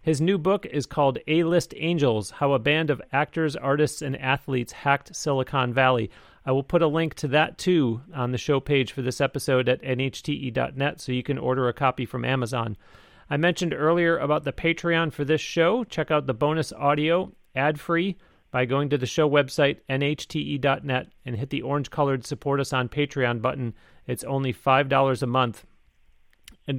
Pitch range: 130-150 Hz